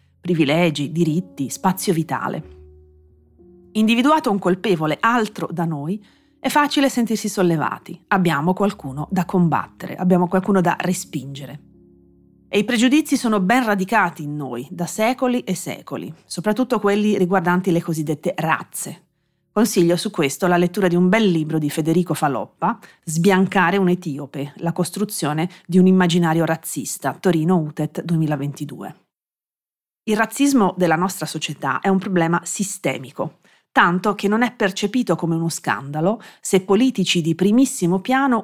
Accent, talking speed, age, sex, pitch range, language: native, 135 wpm, 40-59, female, 160-215 Hz, Italian